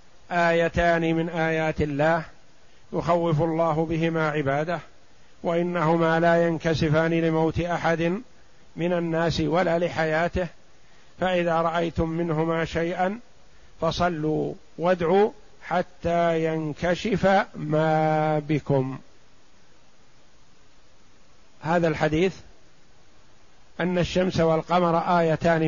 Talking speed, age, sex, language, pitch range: 75 wpm, 50-69, male, Arabic, 155-175 Hz